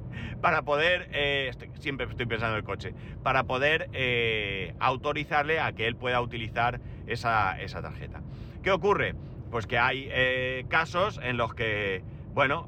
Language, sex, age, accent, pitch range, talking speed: Spanish, male, 30-49, Spanish, 120-150 Hz, 150 wpm